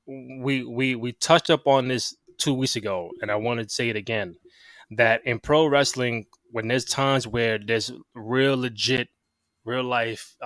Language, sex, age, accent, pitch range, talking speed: English, male, 20-39, American, 115-135 Hz, 170 wpm